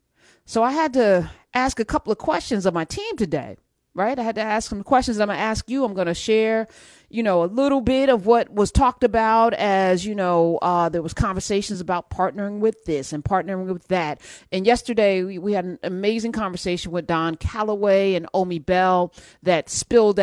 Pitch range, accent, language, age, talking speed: 180-230 Hz, American, English, 40-59, 210 wpm